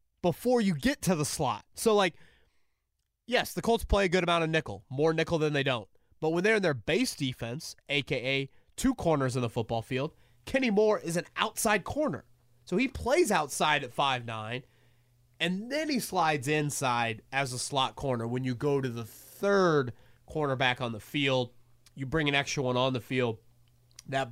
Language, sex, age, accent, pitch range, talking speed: English, male, 30-49, American, 120-160 Hz, 190 wpm